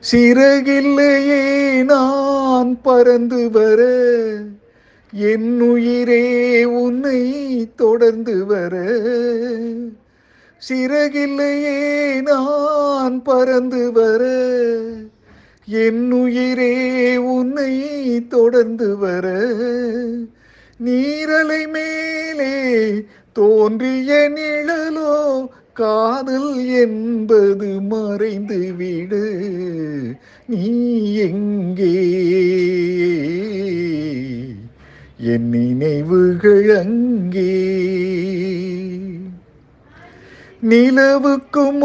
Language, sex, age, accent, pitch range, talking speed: Tamil, male, 50-69, native, 210-265 Hz, 40 wpm